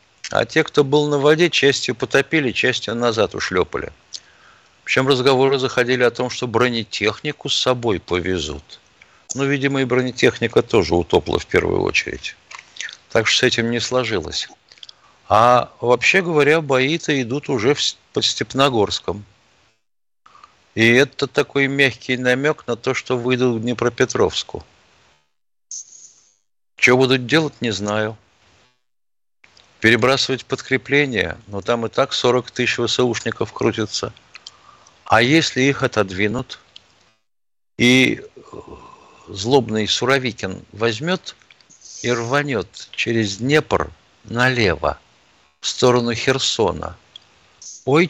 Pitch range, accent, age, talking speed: 110-140 Hz, native, 50-69, 110 wpm